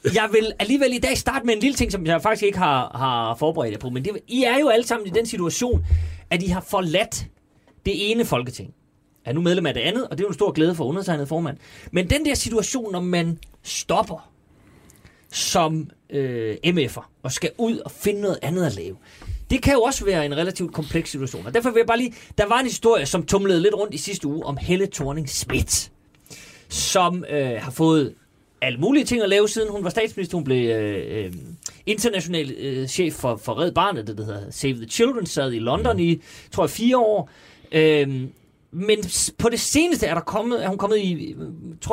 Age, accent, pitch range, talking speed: 30-49, native, 145-210 Hz, 220 wpm